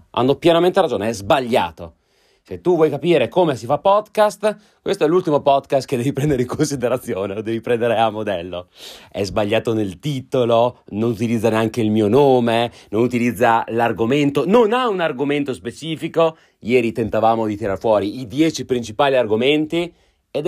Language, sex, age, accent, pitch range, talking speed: Italian, male, 30-49, native, 105-150 Hz, 160 wpm